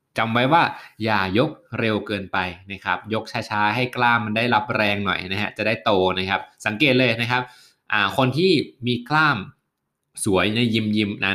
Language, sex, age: Thai, male, 20-39